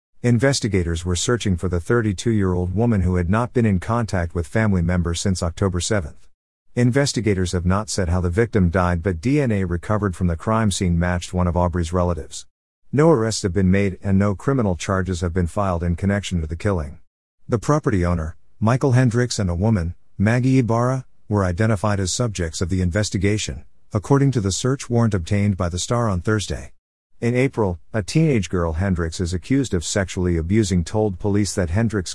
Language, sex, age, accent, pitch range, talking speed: English, male, 50-69, American, 90-110 Hz, 185 wpm